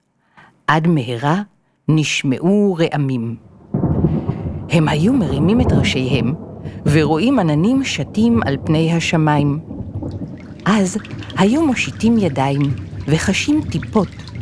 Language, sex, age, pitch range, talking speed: Hebrew, female, 50-69, 135-195 Hz, 85 wpm